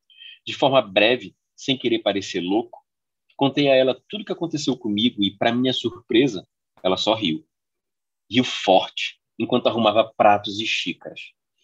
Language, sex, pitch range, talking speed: Portuguese, male, 105-150 Hz, 150 wpm